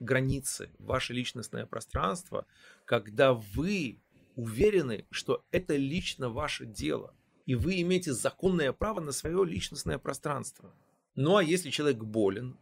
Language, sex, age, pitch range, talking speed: Russian, male, 30-49, 125-175 Hz, 125 wpm